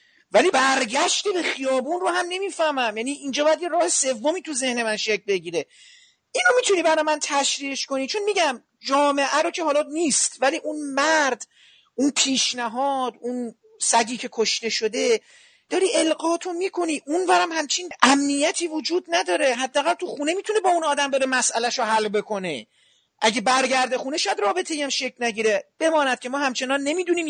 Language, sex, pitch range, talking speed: Persian, male, 235-330 Hz, 160 wpm